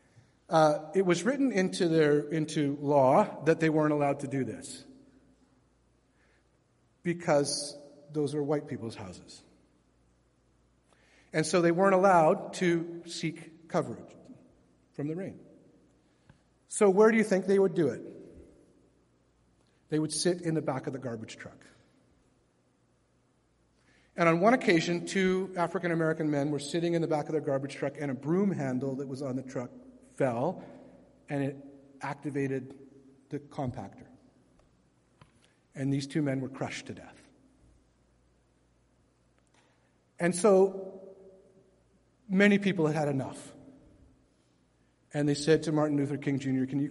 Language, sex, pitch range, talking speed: English, male, 125-165 Hz, 135 wpm